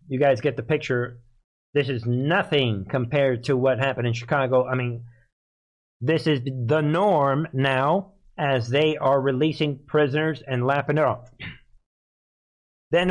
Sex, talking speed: male, 140 wpm